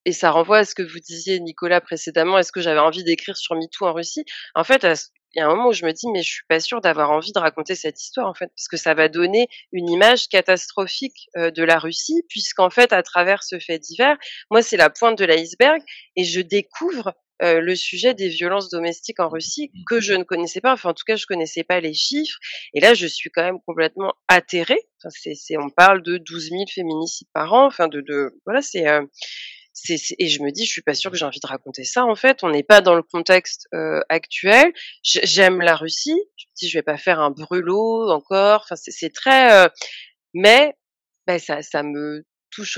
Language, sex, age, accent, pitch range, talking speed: French, female, 30-49, French, 160-200 Hz, 235 wpm